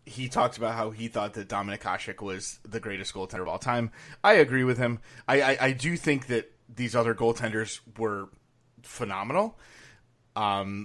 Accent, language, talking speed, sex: American, English, 175 wpm, male